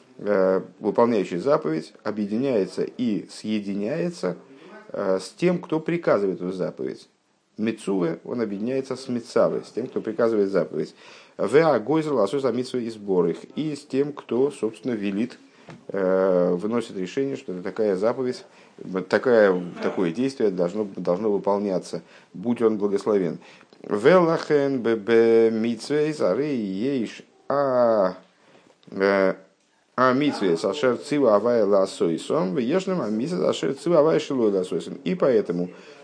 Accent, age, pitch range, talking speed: native, 50-69, 95-135 Hz, 85 wpm